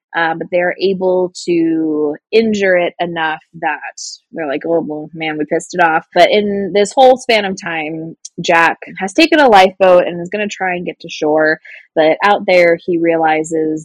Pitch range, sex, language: 160-200 Hz, female, English